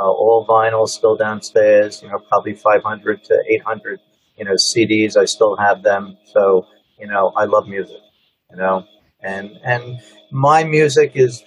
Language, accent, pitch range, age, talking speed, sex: English, American, 110-155 Hz, 50-69, 160 wpm, male